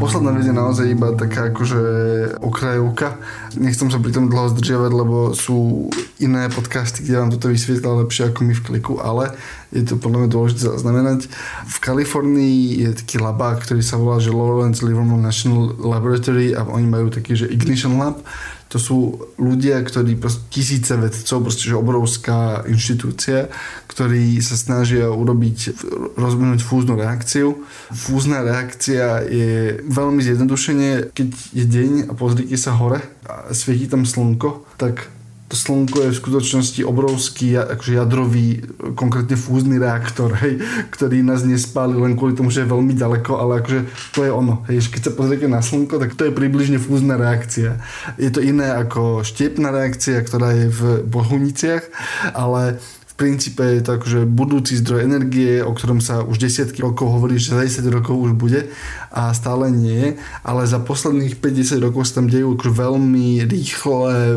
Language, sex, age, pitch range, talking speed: Slovak, male, 20-39, 120-130 Hz, 155 wpm